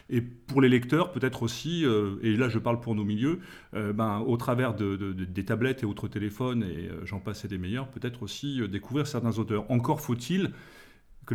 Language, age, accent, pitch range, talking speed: French, 30-49, French, 105-135 Hz, 220 wpm